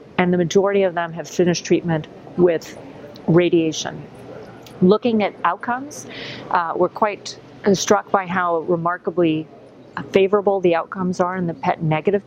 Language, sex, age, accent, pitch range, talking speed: Portuguese, female, 40-59, American, 165-195 Hz, 135 wpm